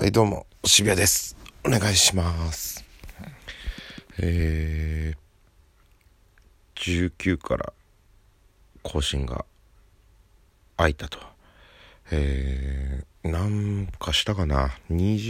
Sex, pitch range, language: male, 75-95 Hz, Japanese